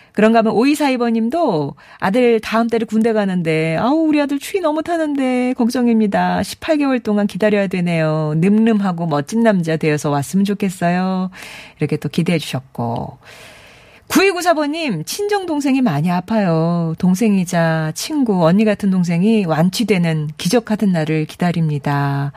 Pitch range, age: 165-230 Hz, 40-59